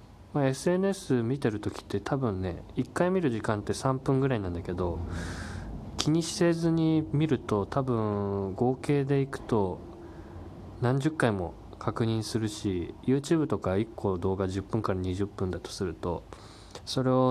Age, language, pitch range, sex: 20-39, Japanese, 95-130 Hz, male